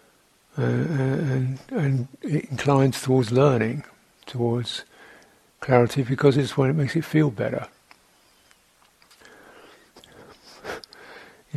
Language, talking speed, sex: English, 95 wpm, male